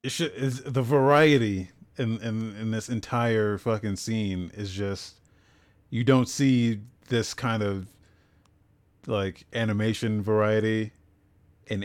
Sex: male